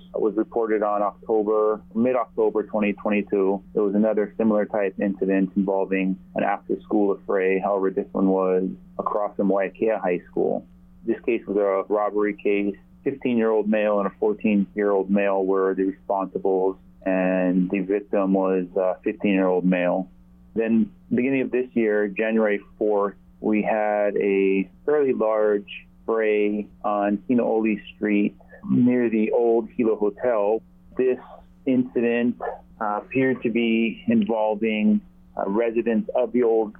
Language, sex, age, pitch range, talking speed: English, male, 30-49, 100-110 Hz, 145 wpm